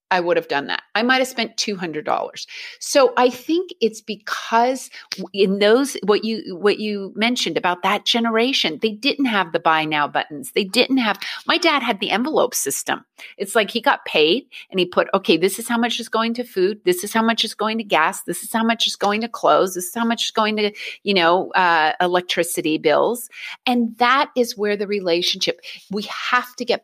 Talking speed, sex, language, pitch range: 215 wpm, female, English, 190-250 Hz